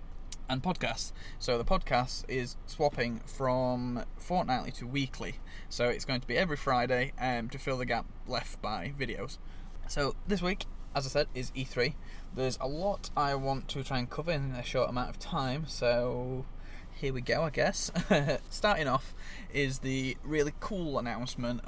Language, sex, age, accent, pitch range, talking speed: English, male, 10-29, British, 120-140 Hz, 170 wpm